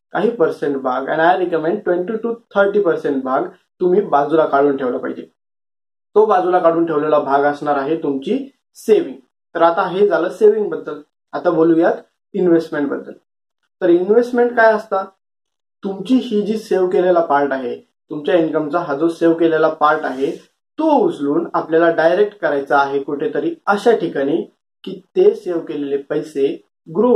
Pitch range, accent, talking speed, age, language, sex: 150-225 Hz, native, 115 wpm, 20-39, Marathi, male